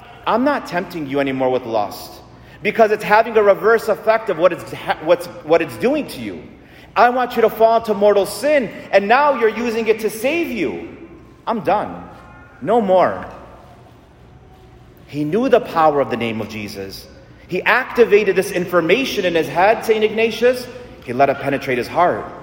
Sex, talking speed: male, 175 wpm